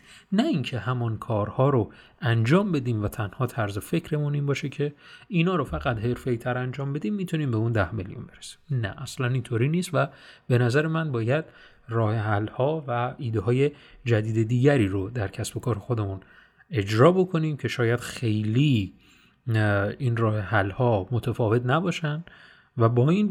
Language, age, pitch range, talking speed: Persian, 30-49, 110-145 Hz, 160 wpm